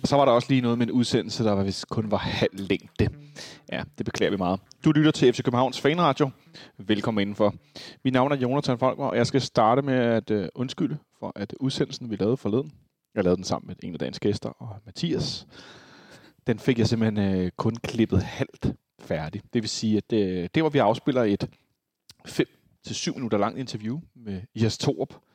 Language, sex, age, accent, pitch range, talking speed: Danish, male, 30-49, native, 105-135 Hz, 190 wpm